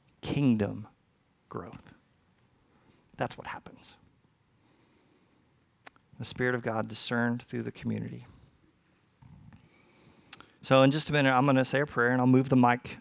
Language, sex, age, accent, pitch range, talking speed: English, male, 40-59, American, 130-155 Hz, 130 wpm